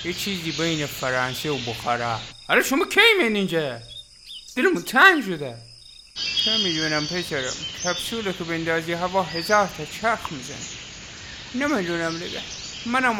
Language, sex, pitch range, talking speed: Persian, male, 160-240 Hz, 130 wpm